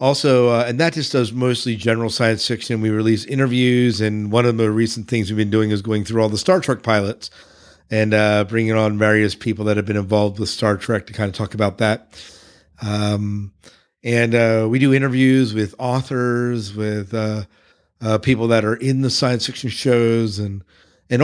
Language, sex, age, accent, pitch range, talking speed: English, male, 50-69, American, 110-125 Hz, 200 wpm